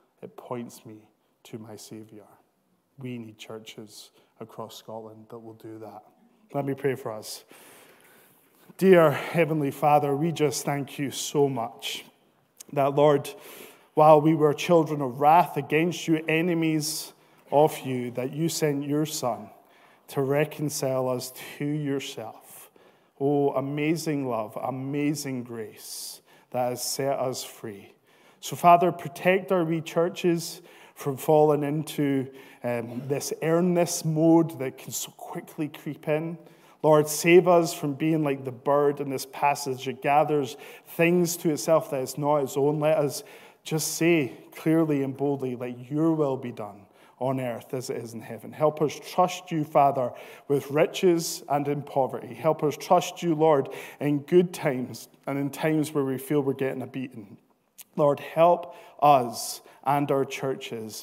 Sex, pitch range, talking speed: male, 130-155 Hz, 150 wpm